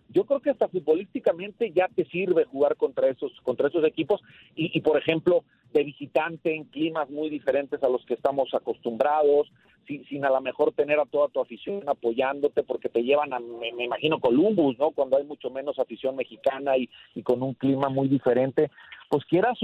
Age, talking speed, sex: 40-59, 195 wpm, male